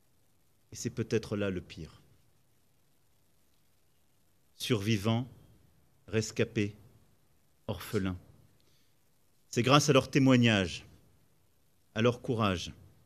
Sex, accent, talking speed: male, French, 80 wpm